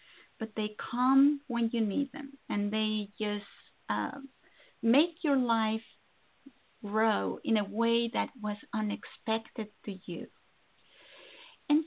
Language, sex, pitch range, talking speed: English, female, 215-275 Hz, 120 wpm